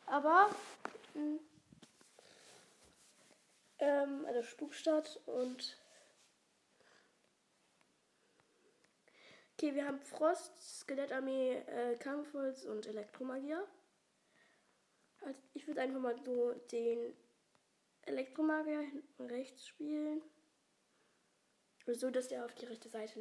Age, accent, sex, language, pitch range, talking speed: 20-39, German, female, German, 250-310 Hz, 85 wpm